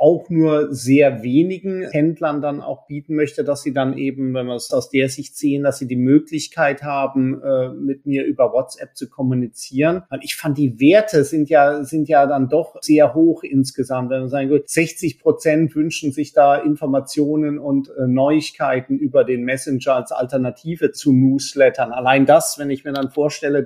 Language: German